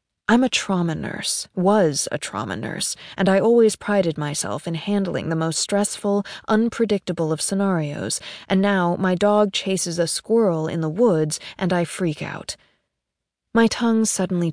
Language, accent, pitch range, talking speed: English, American, 155-185 Hz, 155 wpm